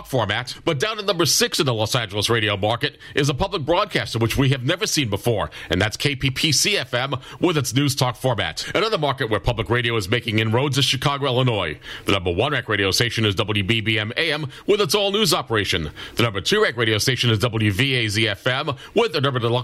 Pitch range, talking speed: 115-145 Hz, 210 wpm